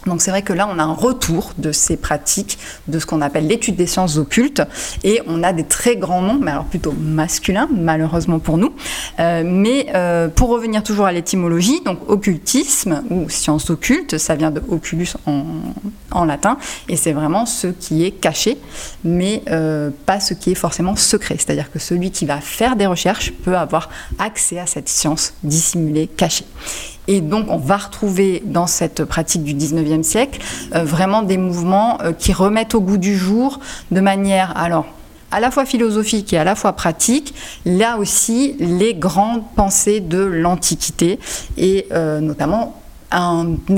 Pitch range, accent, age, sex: 160-205 Hz, French, 20-39, female